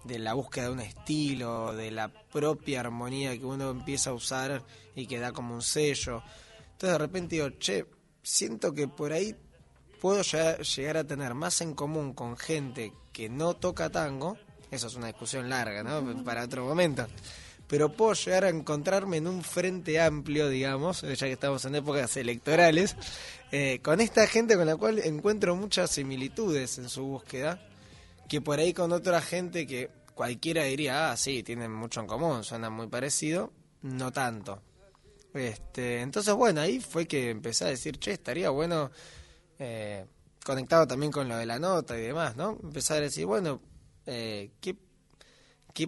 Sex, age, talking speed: male, 20-39, 170 wpm